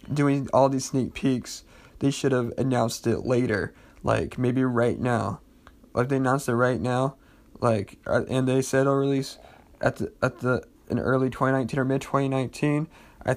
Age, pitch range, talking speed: 20-39, 130-160 Hz, 180 wpm